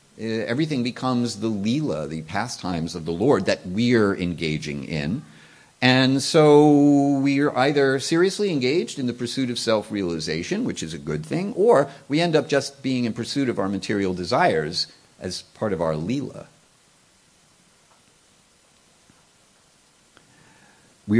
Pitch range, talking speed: 85-135 Hz, 135 wpm